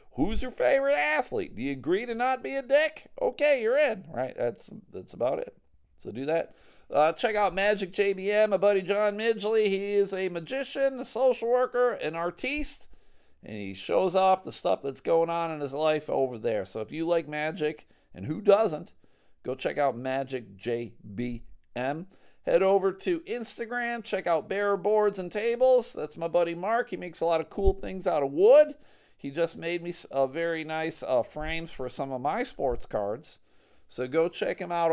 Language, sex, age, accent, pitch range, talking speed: English, male, 40-59, American, 135-210 Hz, 190 wpm